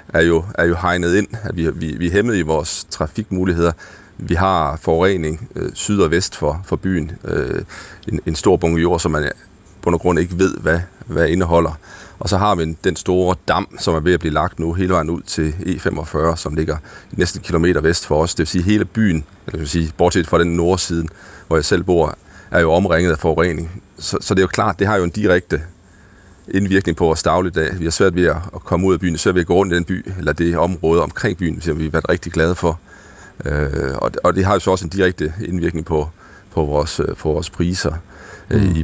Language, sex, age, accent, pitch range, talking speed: Danish, male, 40-59, native, 80-95 Hz, 230 wpm